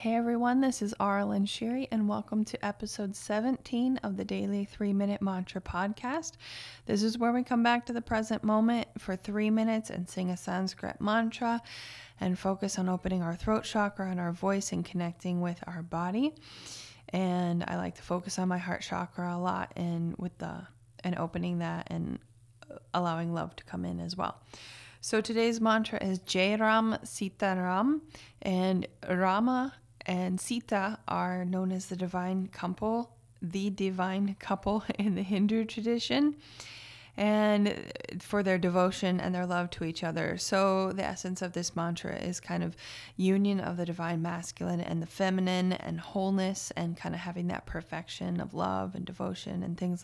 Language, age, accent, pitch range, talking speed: English, 20-39, American, 175-210 Hz, 170 wpm